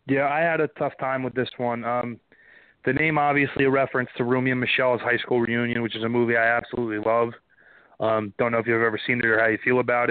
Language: English